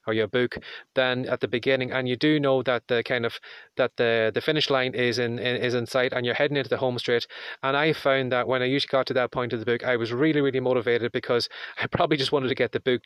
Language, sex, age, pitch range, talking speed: English, male, 30-49, 120-135 Hz, 275 wpm